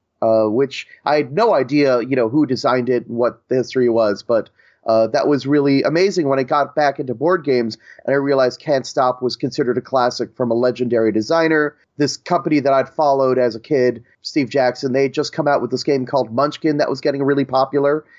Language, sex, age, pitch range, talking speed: English, male, 30-49, 125-150 Hz, 220 wpm